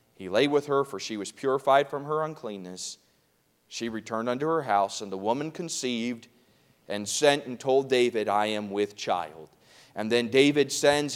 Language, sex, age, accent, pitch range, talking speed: English, male, 30-49, American, 120-155 Hz, 175 wpm